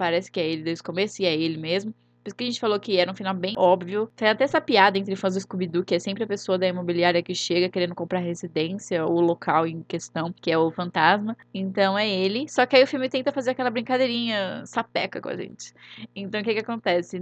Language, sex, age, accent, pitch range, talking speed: Portuguese, female, 10-29, Brazilian, 180-220 Hz, 255 wpm